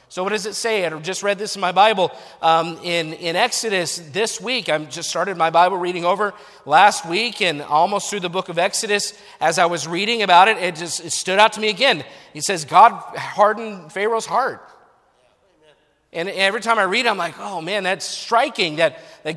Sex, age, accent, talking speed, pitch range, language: male, 40-59, American, 210 wpm, 180-240 Hz, English